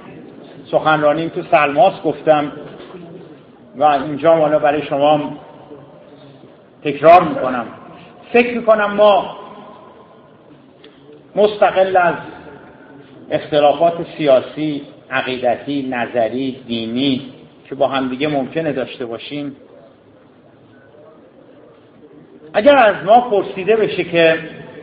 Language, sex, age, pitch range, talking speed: Persian, male, 50-69, 145-195 Hz, 80 wpm